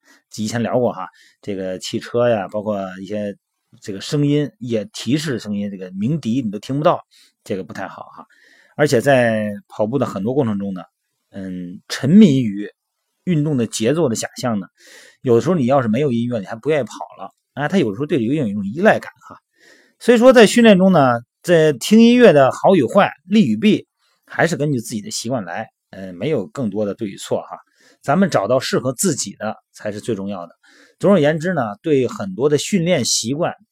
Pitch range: 110-165 Hz